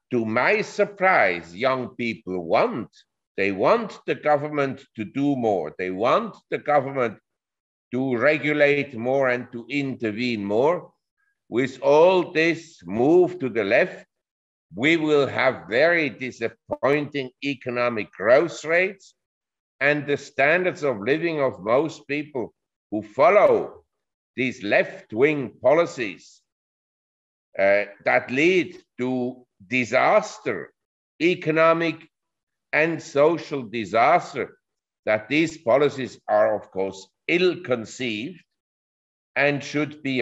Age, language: 50-69, English